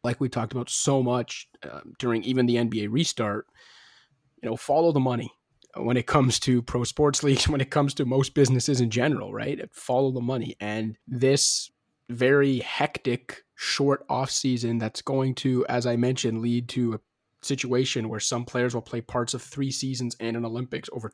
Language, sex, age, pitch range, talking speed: English, male, 20-39, 120-135 Hz, 185 wpm